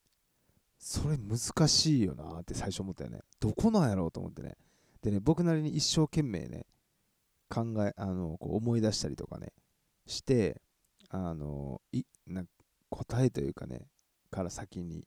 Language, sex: Japanese, male